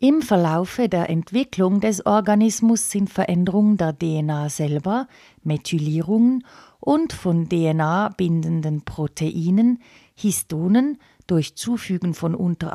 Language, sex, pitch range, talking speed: German, female, 165-230 Hz, 105 wpm